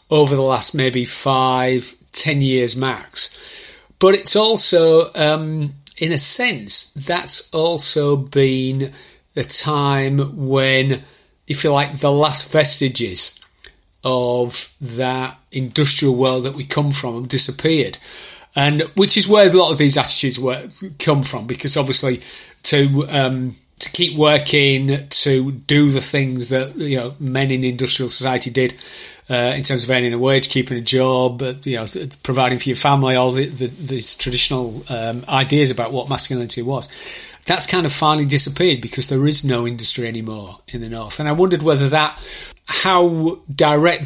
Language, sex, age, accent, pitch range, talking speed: English, male, 40-59, British, 125-150 Hz, 155 wpm